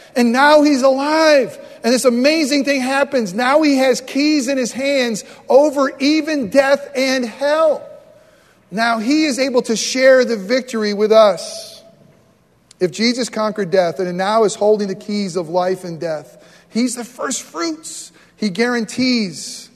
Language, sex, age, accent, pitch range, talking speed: English, male, 40-59, American, 195-265 Hz, 155 wpm